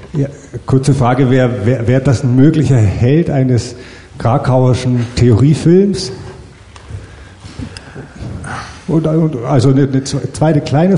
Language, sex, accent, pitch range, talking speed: German, male, German, 100-135 Hz, 110 wpm